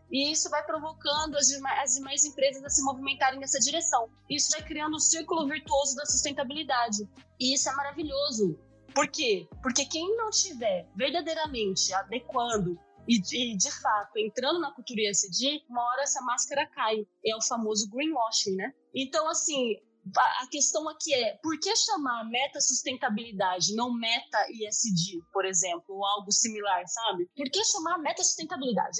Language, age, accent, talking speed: Portuguese, 20-39, Brazilian, 150 wpm